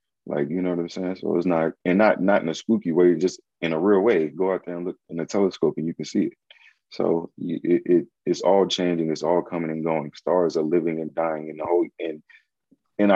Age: 30-49